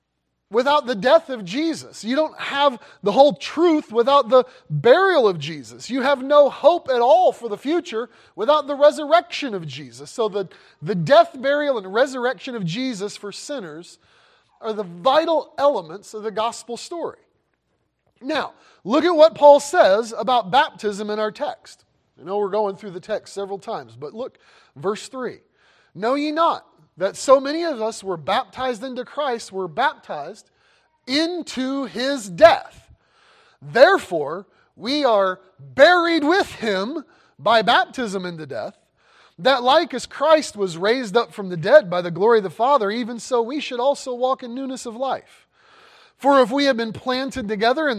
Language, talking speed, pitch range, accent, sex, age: English, 170 wpm, 205-285 Hz, American, male, 30-49